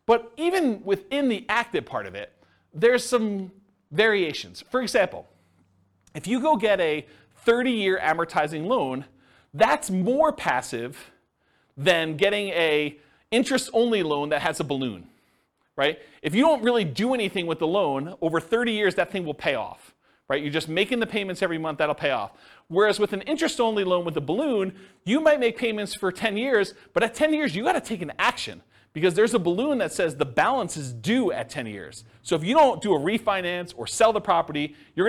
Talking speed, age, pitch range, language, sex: 190 wpm, 40-59, 150-230 Hz, English, male